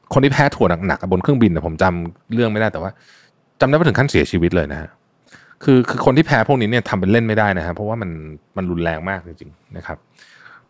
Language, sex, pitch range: Thai, male, 90-130 Hz